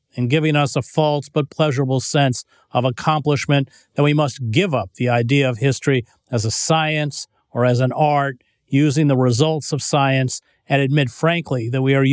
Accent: American